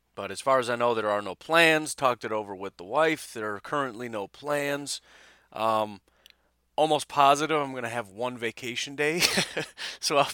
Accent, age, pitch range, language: American, 30-49, 95-135 Hz, English